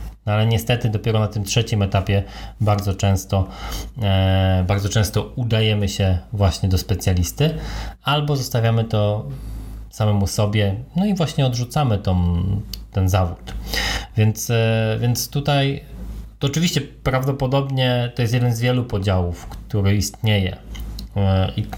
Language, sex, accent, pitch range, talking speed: Polish, male, native, 100-125 Hz, 120 wpm